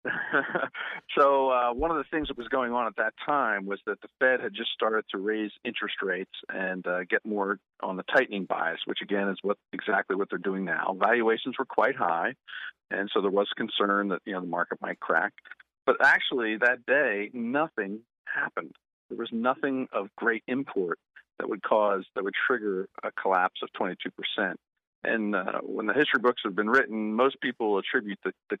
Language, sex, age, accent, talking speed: English, male, 50-69, American, 195 wpm